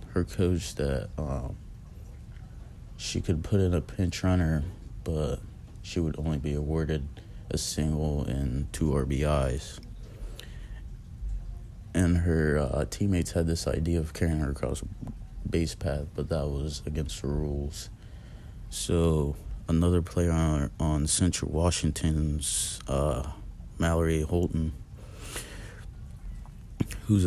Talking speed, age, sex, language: 110 wpm, 30-49, male, English